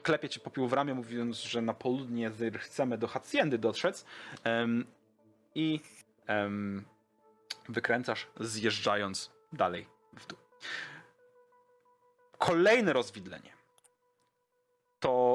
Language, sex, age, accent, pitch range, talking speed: Polish, male, 30-49, native, 110-155 Hz, 95 wpm